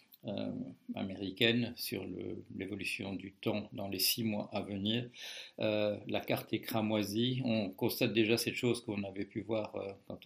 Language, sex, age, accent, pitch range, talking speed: French, male, 50-69, French, 105-120 Hz, 170 wpm